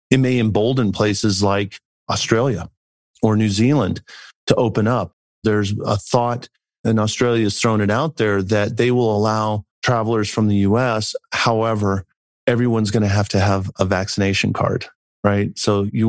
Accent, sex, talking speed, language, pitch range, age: American, male, 160 wpm, English, 105-120 Hz, 40-59